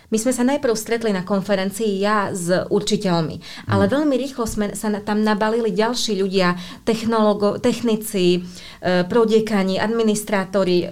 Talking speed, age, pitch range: 120 wpm, 30-49, 180-220 Hz